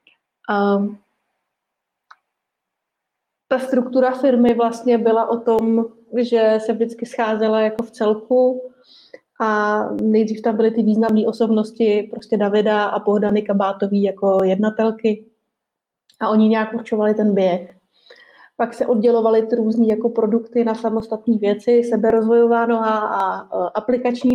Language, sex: Czech, female